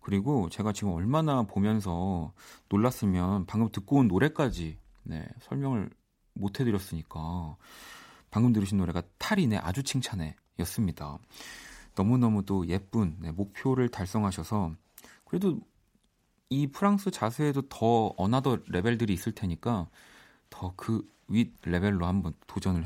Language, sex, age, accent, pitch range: Korean, male, 40-59, native, 95-135 Hz